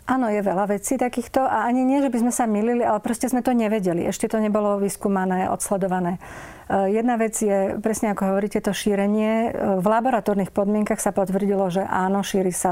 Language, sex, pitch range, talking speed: Slovak, female, 190-215 Hz, 190 wpm